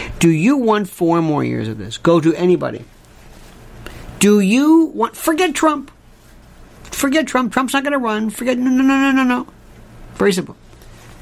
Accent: American